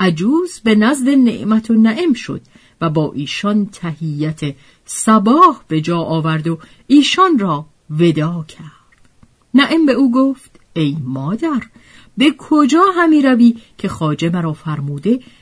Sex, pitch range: female, 170-260 Hz